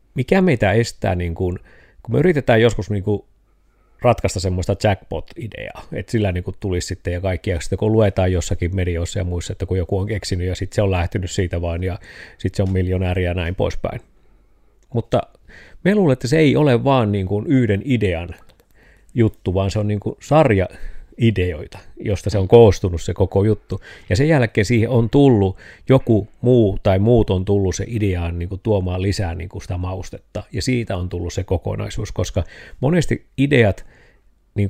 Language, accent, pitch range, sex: Finnish, native, 95-115 Hz, male